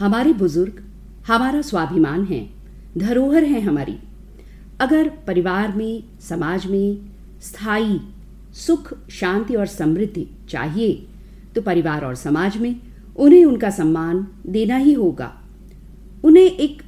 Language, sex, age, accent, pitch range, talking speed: Hindi, female, 50-69, native, 180-255 Hz, 115 wpm